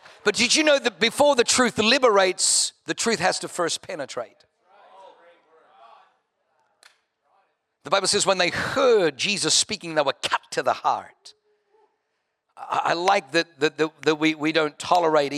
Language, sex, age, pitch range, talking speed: English, male, 50-69, 140-175 Hz, 155 wpm